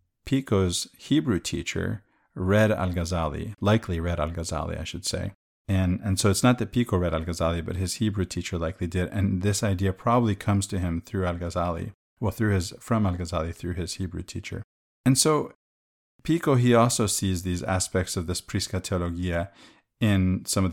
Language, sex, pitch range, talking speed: English, male, 90-110 Hz, 170 wpm